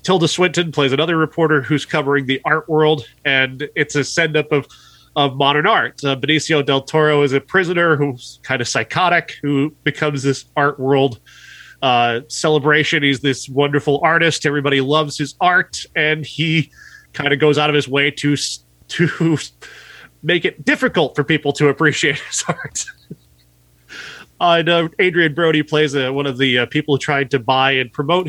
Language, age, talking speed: English, 20-39, 175 wpm